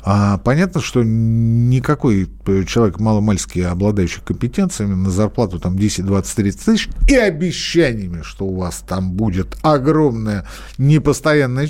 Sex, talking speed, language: male, 105 wpm, Russian